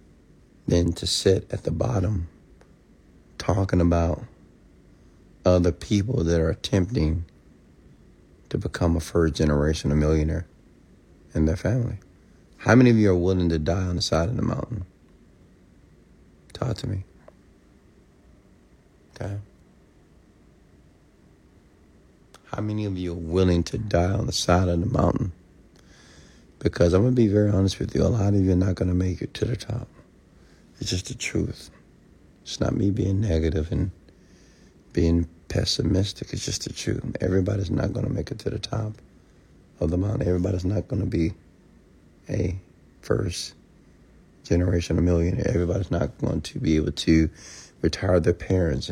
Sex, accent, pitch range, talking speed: male, American, 80-100 Hz, 150 wpm